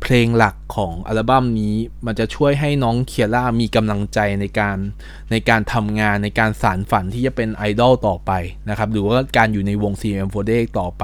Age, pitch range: 20-39, 105-125 Hz